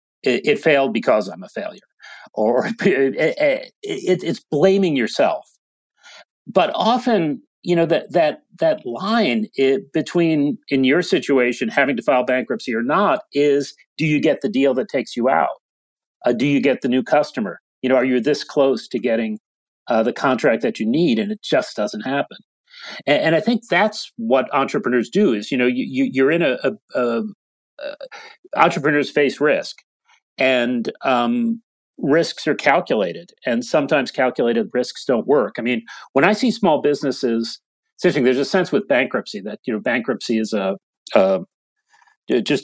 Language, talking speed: English, 170 wpm